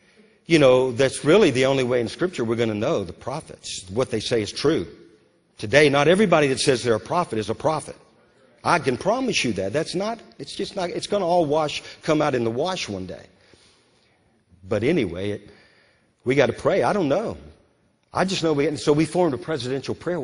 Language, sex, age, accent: English, male, 50-69, American